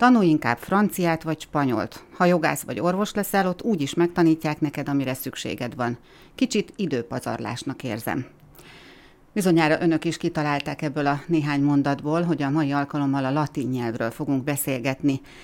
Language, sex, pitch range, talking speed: Hungarian, female, 135-165 Hz, 150 wpm